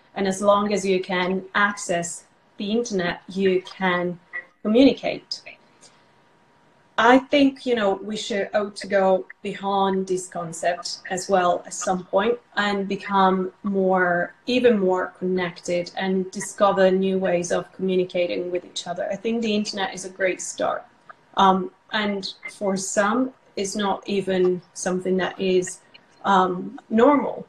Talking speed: 135 wpm